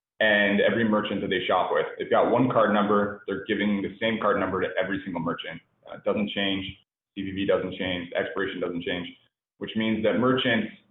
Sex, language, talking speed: male, English, 195 wpm